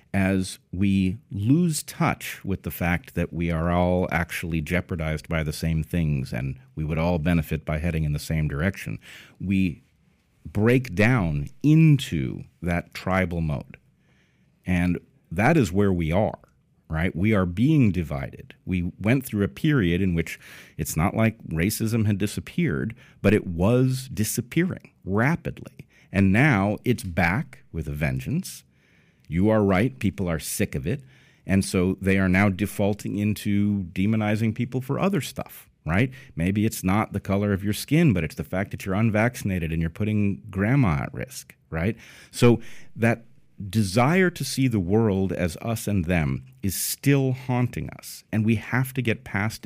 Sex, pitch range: male, 85-115 Hz